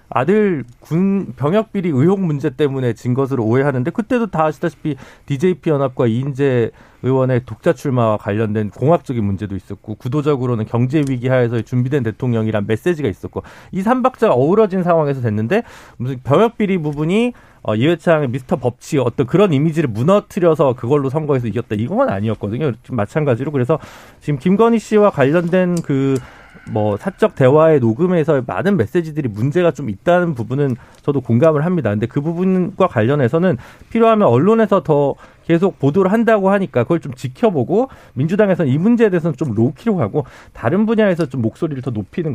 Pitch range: 120-180 Hz